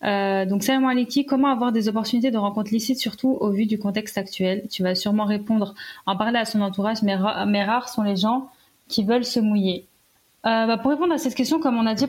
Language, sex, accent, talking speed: French, female, French, 230 wpm